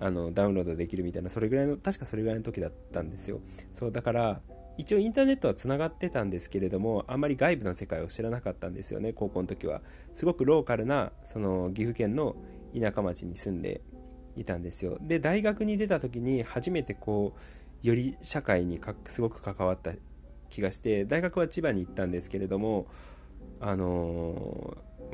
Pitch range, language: 90-135 Hz, Japanese